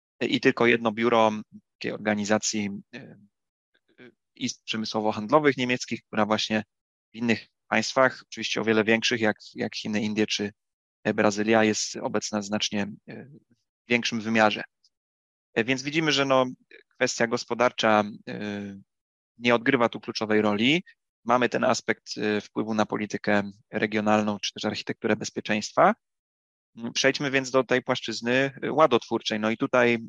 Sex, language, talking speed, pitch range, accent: male, Polish, 140 wpm, 105-120 Hz, native